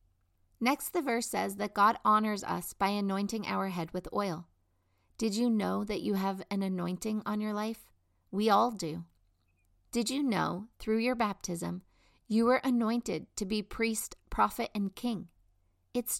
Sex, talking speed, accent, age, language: female, 165 wpm, American, 40-59, English